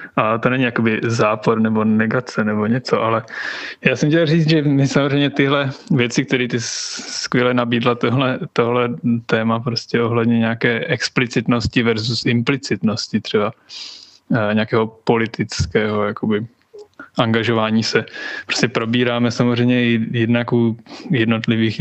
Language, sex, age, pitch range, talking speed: Czech, male, 20-39, 110-130 Hz, 125 wpm